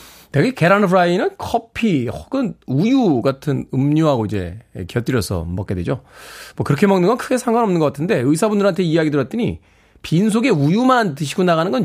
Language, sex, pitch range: Korean, male, 135-190 Hz